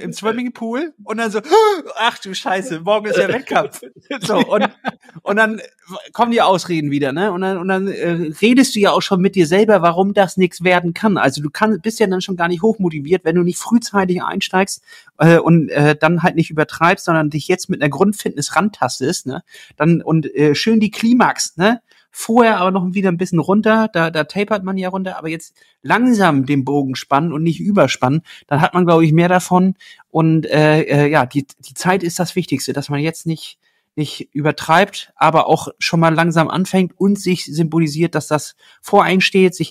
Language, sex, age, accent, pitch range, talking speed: German, male, 30-49, German, 155-195 Hz, 205 wpm